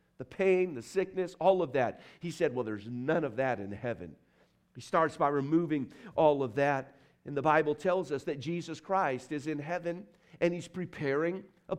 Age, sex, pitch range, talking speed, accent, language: 50-69, male, 145-185 Hz, 195 wpm, American, English